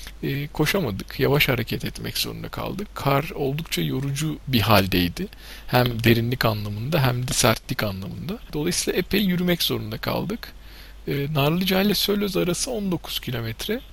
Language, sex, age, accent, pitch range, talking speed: Turkish, male, 50-69, native, 135-175 Hz, 125 wpm